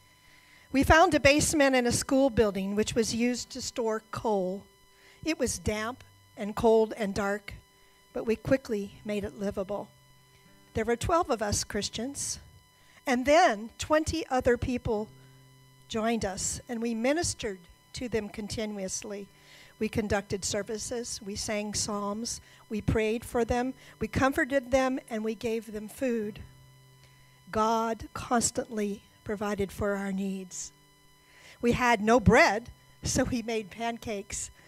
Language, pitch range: English, 200-250 Hz